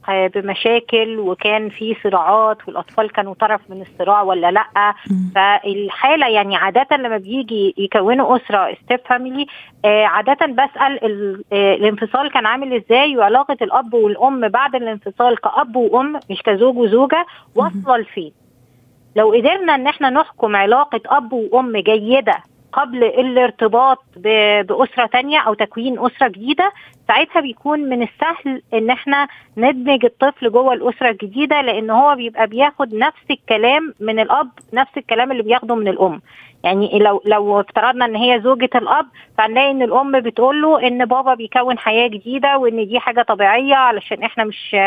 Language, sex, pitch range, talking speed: Arabic, female, 215-260 Hz, 140 wpm